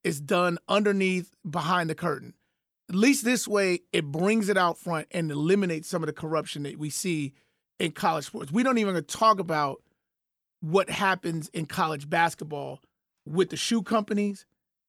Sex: male